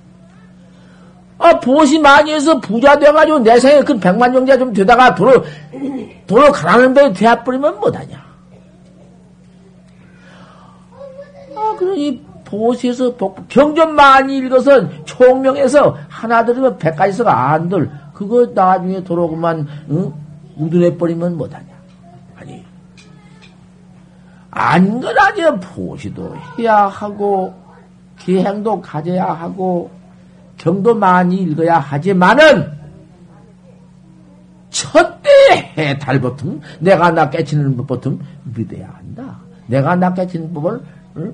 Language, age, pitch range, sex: Korean, 50-69, 170-245 Hz, male